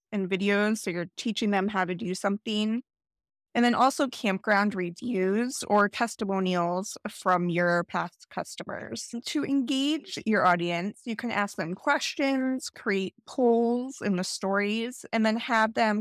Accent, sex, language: American, female, English